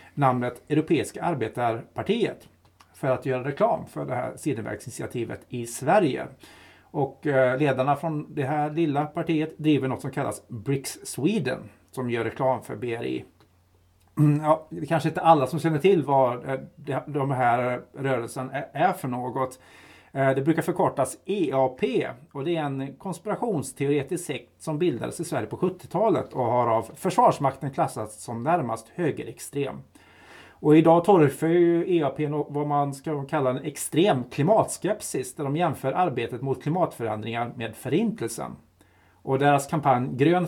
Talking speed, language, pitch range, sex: 140 wpm, English, 125-165 Hz, male